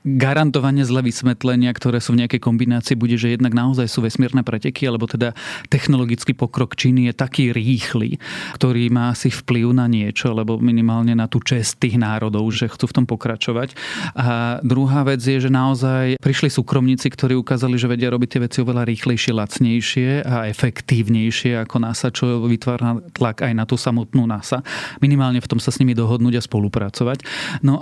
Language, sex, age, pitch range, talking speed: Slovak, male, 30-49, 120-135 Hz, 175 wpm